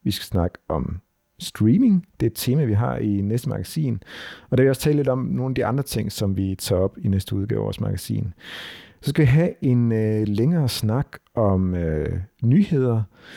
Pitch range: 95-130 Hz